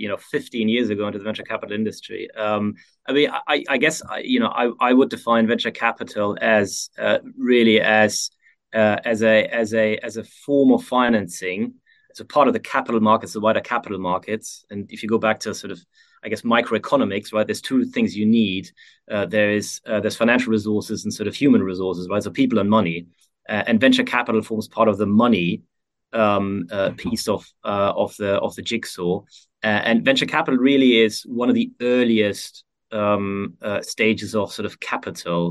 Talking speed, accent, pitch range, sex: 205 wpm, German, 105-125 Hz, male